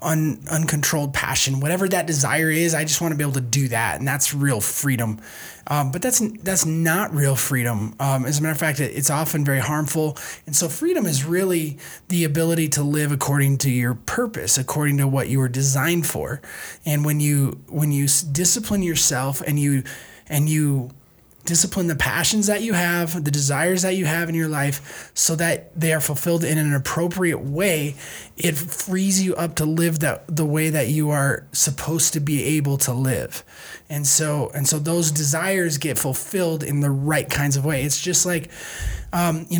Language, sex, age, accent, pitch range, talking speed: English, male, 20-39, American, 140-170 Hz, 195 wpm